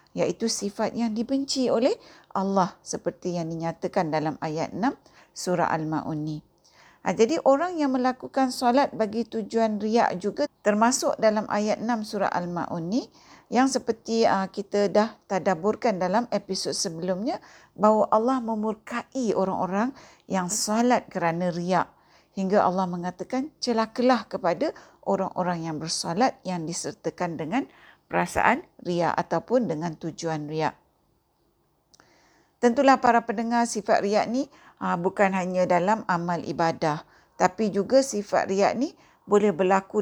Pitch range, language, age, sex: 180-235 Hz, Malay, 50-69, female